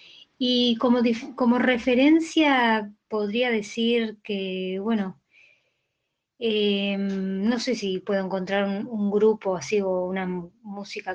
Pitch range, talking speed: 185-235 Hz, 115 wpm